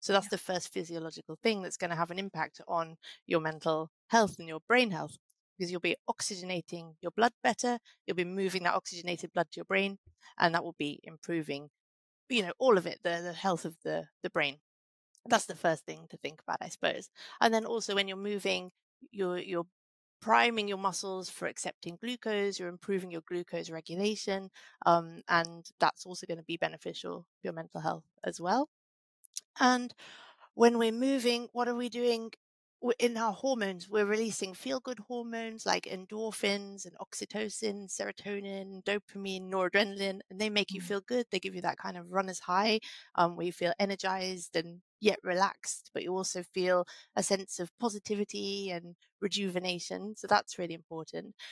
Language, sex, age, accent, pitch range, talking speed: English, female, 30-49, British, 175-210 Hz, 180 wpm